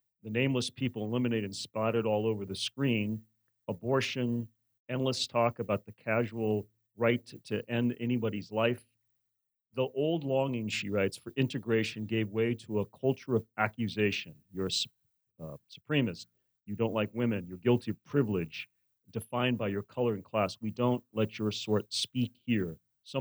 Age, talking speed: 40-59, 160 wpm